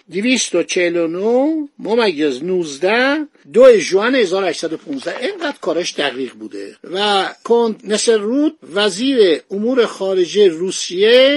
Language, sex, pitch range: Persian, male, 175-245 Hz